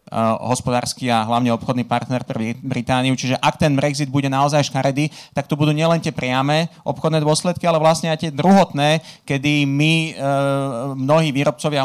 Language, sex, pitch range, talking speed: Slovak, male, 135-155 Hz, 155 wpm